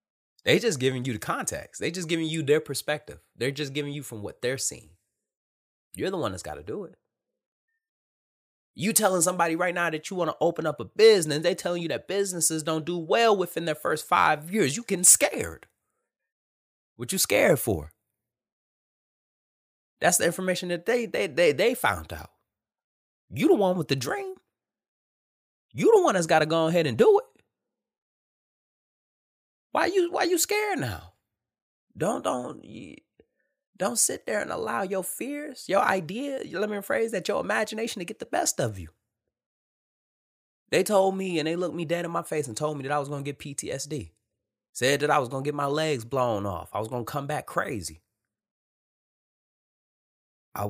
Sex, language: male, English